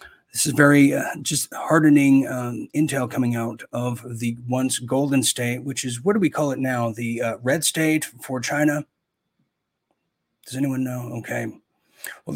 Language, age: English, 40-59